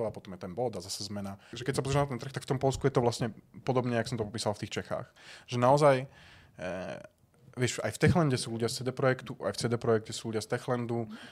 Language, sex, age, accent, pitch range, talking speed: Czech, male, 20-39, native, 110-130 Hz, 260 wpm